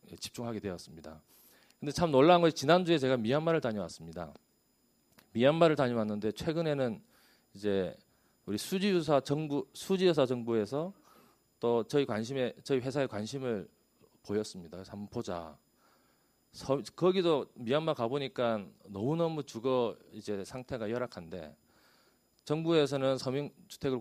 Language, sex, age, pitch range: Korean, male, 40-59, 105-145 Hz